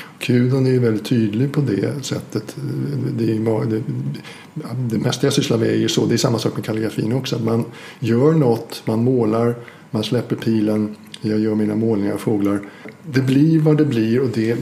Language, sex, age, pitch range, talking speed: Swedish, male, 60-79, 110-150 Hz, 195 wpm